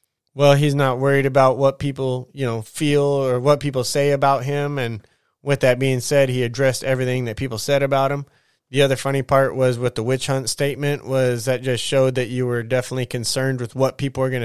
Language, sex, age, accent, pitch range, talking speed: English, male, 20-39, American, 125-140 Hz, 220 wpm